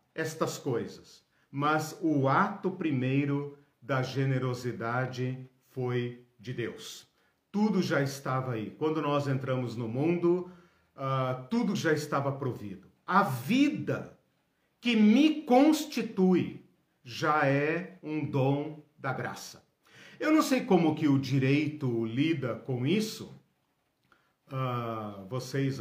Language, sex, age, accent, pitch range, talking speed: Portuguese, male, 50-69, Brazilian, 125-175 Hz, 105 wpm